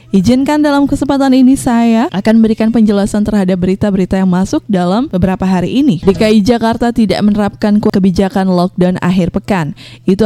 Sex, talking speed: female, 145 wpm